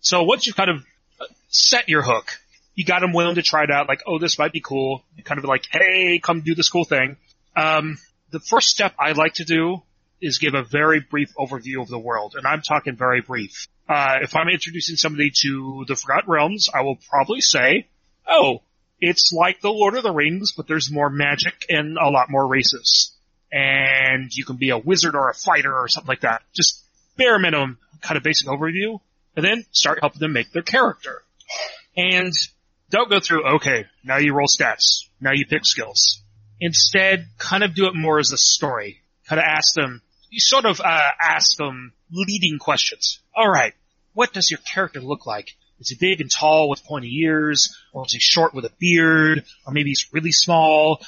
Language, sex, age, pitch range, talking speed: English, male, 30-49, 135-170 Hz, 205 wpm